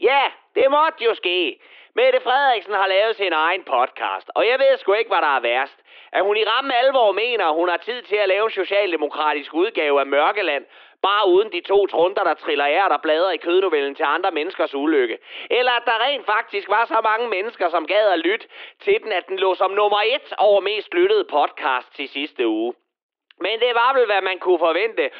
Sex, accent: male, native